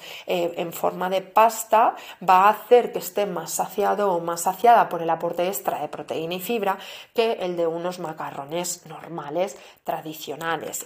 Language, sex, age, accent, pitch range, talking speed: Spanish, female, 30-49, Spanish, 170-225 Hz, 160 wpm